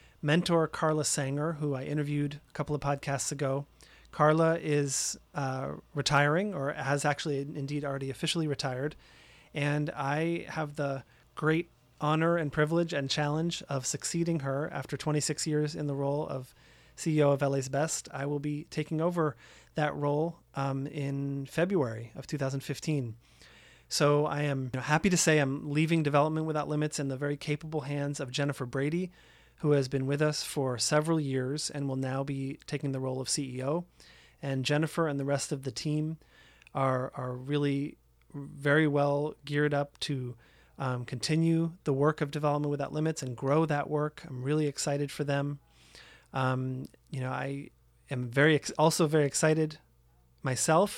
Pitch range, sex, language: 135-150 Hz, male, English